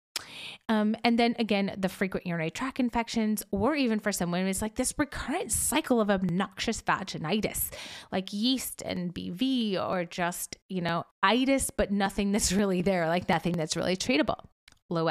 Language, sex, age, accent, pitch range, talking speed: English, female, 30-49, American, 185-250 Hz, 165 wpm